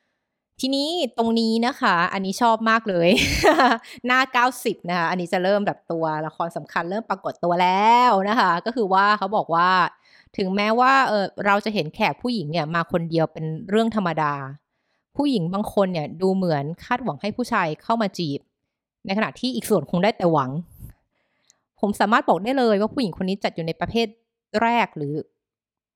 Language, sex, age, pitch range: Thai, female, 20-39, 165-220 Hz